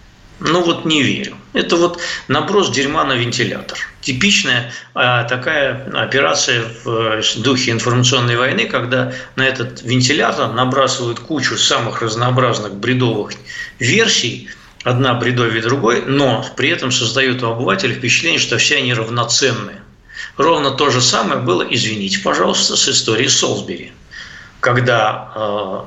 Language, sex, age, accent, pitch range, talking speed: Russian, male, 50-69, native, 115-130 Hz, 130 wpm